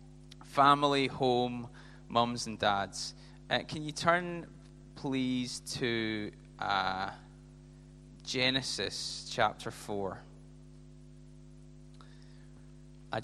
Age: 20-39